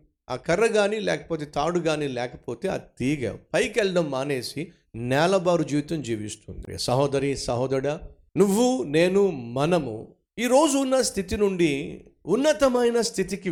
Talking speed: 115 wpm